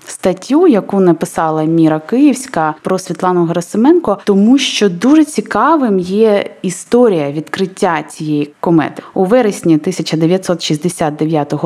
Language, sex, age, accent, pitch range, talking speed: Ukrainian, female, 20-39, native, 160-225 Hz, 105 wpm